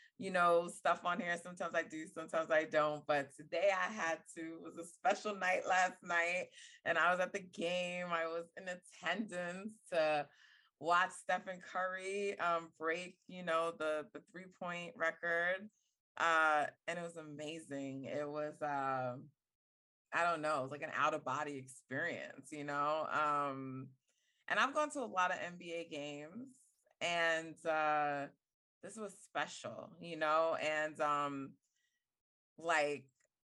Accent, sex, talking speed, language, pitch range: American, female, 150 wpm, English, 150-175 Hz